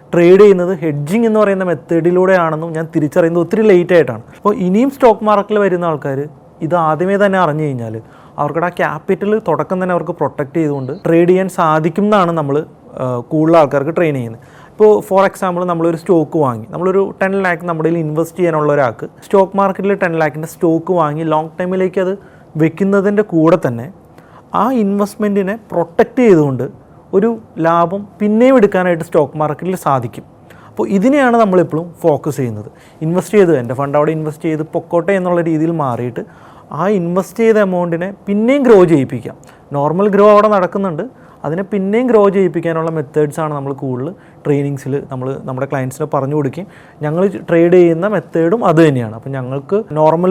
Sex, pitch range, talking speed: male, 150-195 Hz, 145 wpm